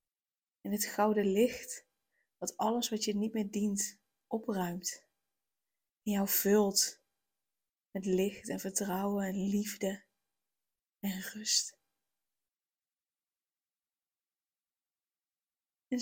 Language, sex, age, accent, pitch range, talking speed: Dutch, female, 20-39, Dutch, 200-235 Hz, 90 wpm